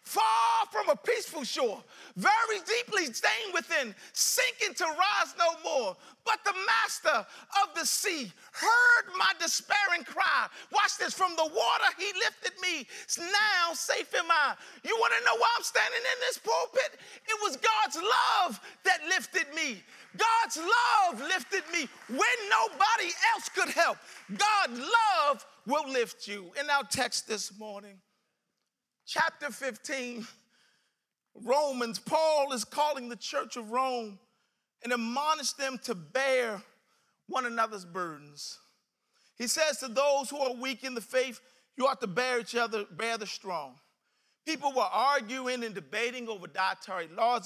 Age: 40-59